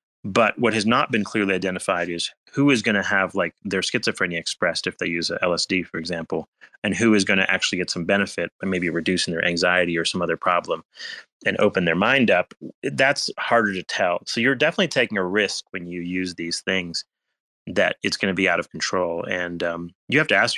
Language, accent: English, American